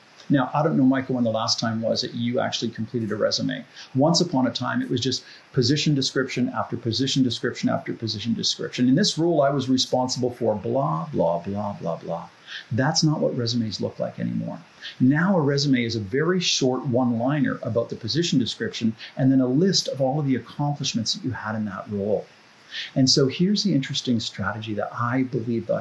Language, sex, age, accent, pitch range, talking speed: English, male, 40-59, American, 115-145 Hz, 200 wpm